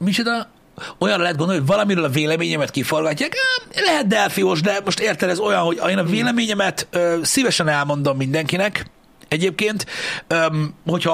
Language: Hungarian